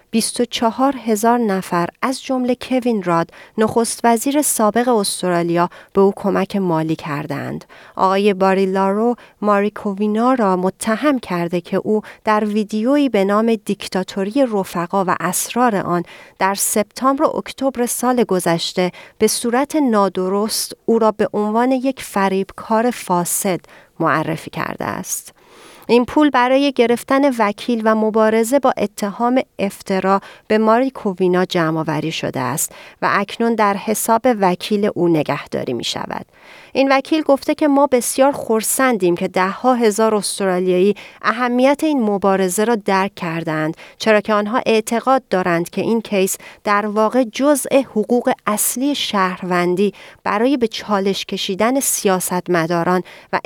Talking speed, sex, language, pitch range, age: 130 wpm, female, Persian, 190-245 Hz, 40-59